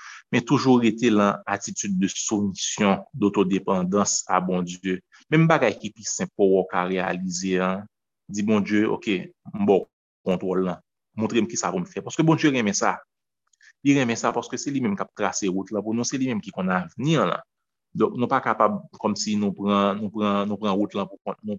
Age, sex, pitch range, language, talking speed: 30-49, male, 95-125 Hz, French, 210 wpm